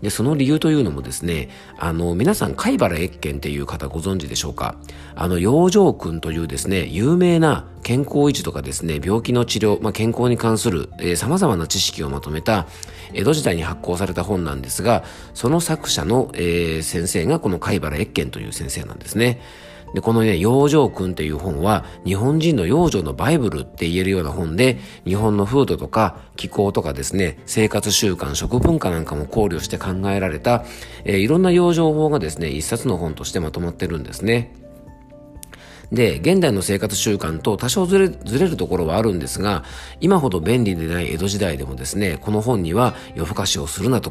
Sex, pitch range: male, 85-120 Hz